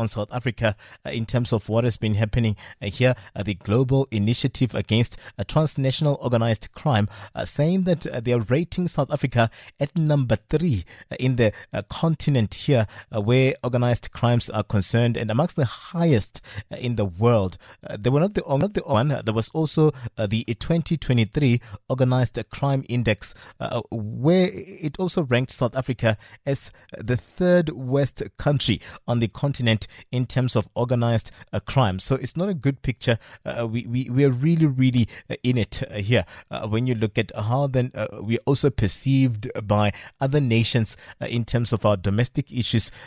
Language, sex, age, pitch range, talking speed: English, male, 30-49, 110-135 Hz, 180 wpm